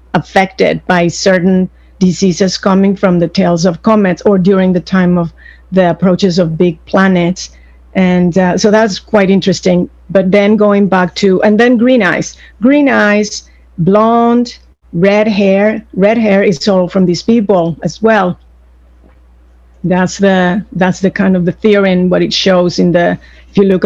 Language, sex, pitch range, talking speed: English, female, 175-205 Hz, 165 wpm